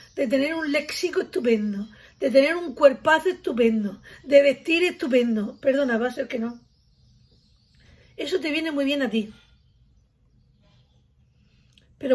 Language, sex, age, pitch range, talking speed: Spanish, female, 40-59, 255-350 Hz, 135 wpm